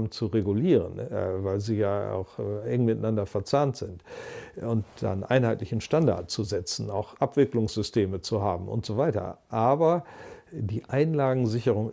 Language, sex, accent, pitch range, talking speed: German, male, German, 110-135 Hz, 130 wpm